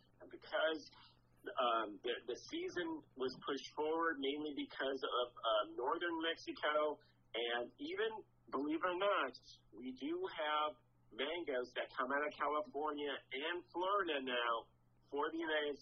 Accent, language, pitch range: American, English, 120-165 Hz